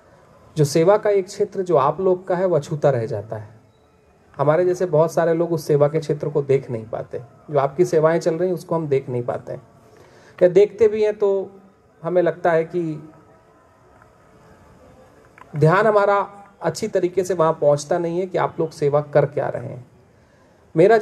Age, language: 40-59, Hindi